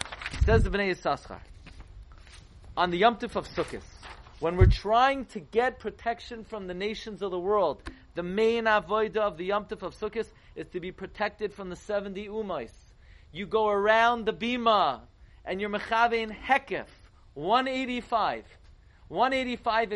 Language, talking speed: English, 140 wpm